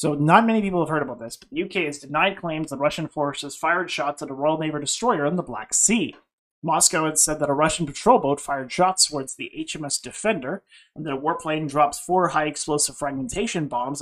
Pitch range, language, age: 140-165 Hz, English, 30-49